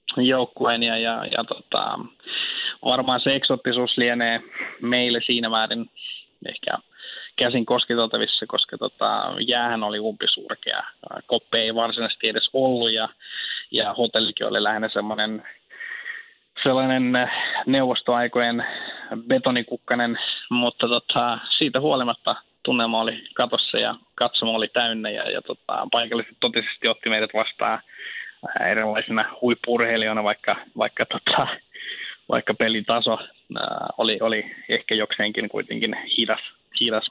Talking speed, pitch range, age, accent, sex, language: 105 wpm, 115-125 Hz, 20-39, native, male, Finnish